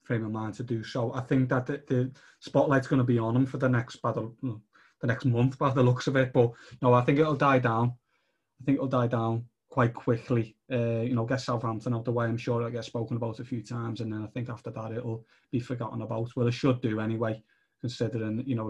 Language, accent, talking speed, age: English, British, 240 wpm, 20-39